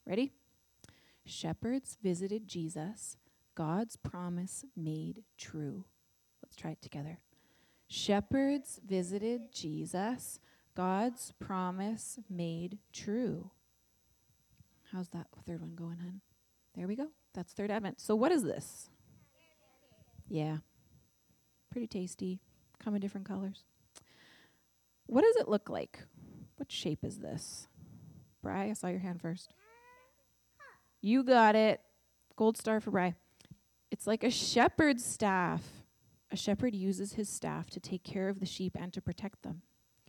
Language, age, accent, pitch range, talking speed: English, 30-49, American, 175-220 Hz, 125 wpm